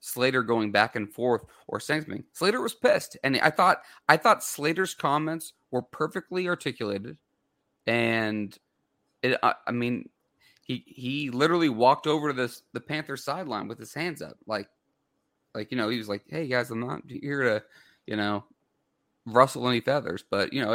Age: 30-49